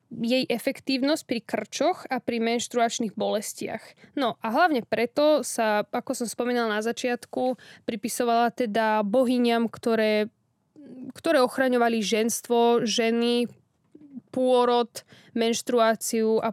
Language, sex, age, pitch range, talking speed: Slovak, female, 10-29, 225-260 Hz, 105 wpm